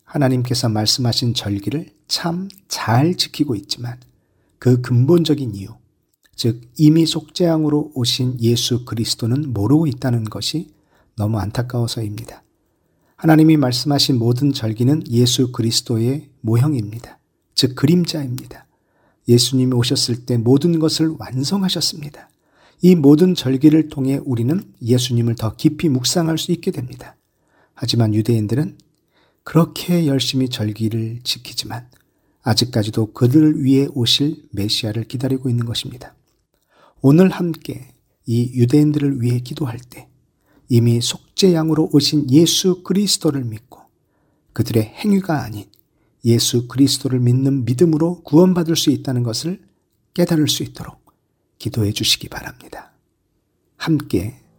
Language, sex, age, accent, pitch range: Korean, male, 40-59, native, 115-155 Hz